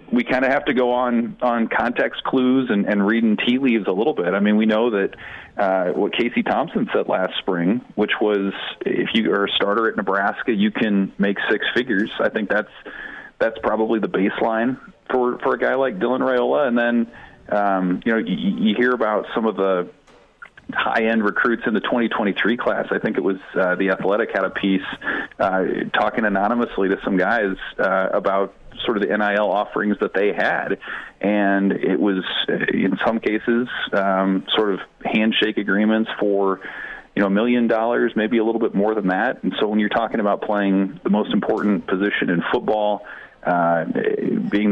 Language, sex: English, male